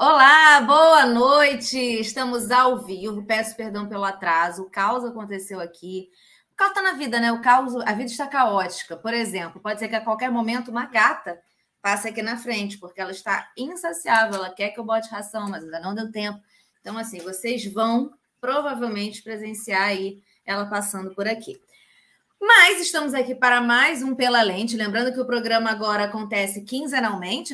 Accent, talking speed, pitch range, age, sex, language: Brazilian, 175 wpm, 200-245 Hz, 20-39, female, Portuguese